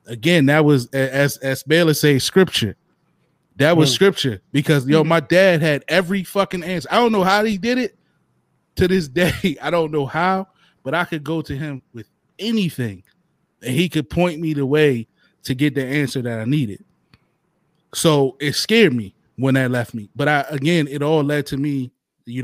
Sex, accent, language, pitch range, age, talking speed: male, American, English, 125-165 Hz, 20-39, 195 wpm